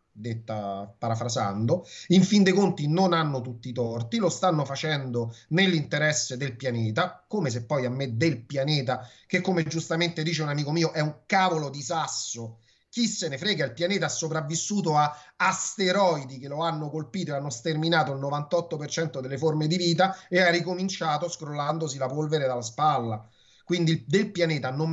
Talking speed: 170 wpm